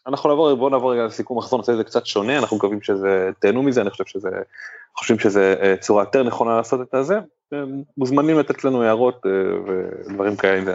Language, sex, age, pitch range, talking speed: Hebrew, male, 20-39, 95-130 Hz, 200 wpm